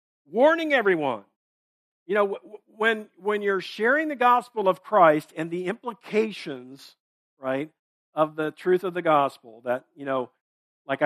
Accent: American